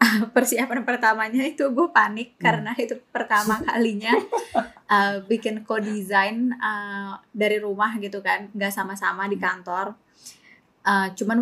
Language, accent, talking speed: Indonesian, native, 125 wpm